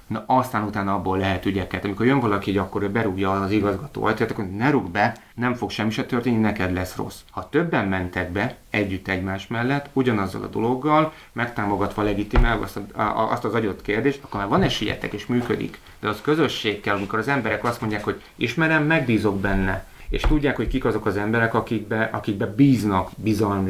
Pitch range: 100-120 Hz